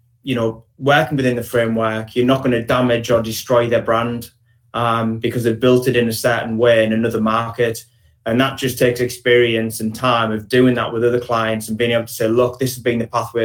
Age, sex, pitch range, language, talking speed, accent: 20-39, male, 115-130 Hz, English, 230 wpm, British